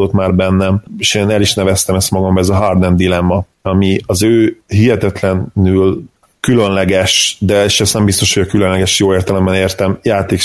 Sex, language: male, Hungarian